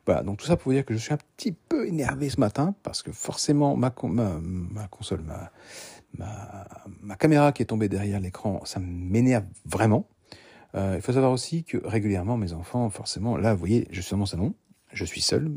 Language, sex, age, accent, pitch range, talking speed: French, male, 50-69, French, 95-125 Hz, 220 wpm